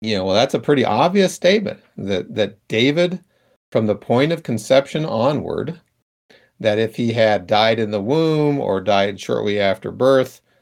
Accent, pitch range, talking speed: American, 100-125 Hz, 170 wpm